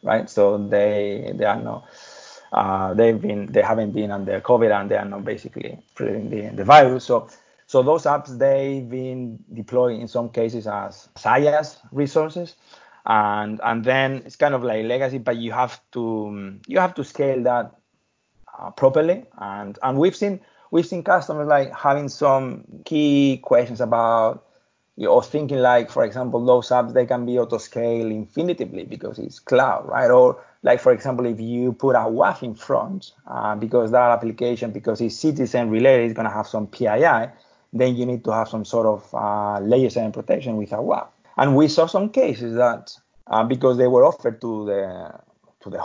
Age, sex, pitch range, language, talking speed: 30-49, male, 110-135 Hz, English, 180 wpm